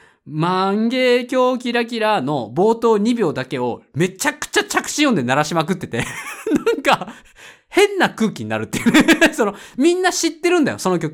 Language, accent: Japanese, native